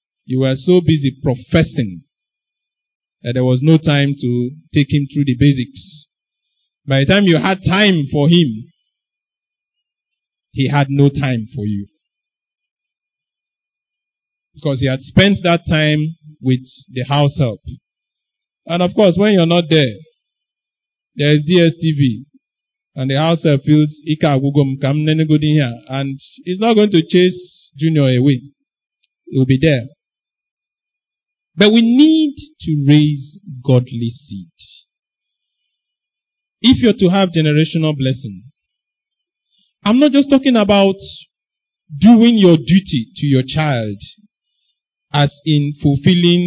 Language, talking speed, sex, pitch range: English, 120 wpm, male, 135-190 Hz